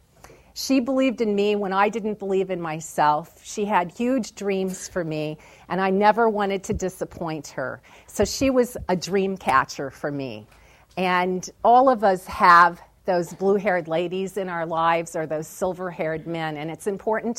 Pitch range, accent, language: 170-205 Hz, American, English